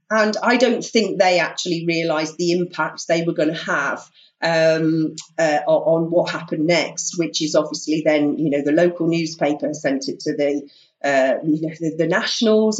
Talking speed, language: 185 wpm, English